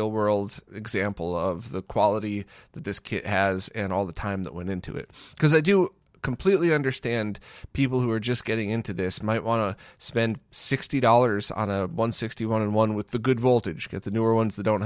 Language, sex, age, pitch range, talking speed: English, male, 20-39, 105-130 Hz, 205 wpm